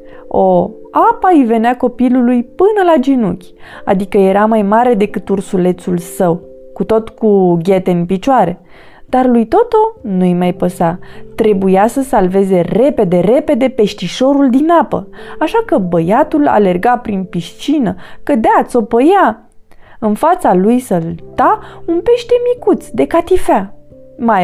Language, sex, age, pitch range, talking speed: Romanian, female, 20-39, 185-280 Hz, 135 wpm